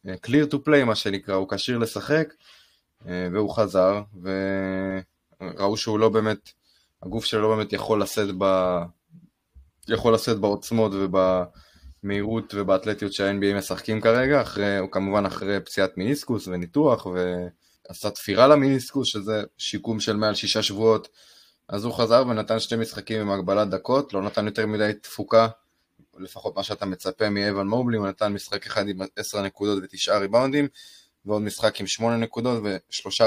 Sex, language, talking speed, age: male, Hebrew, 135 wpm, 20-39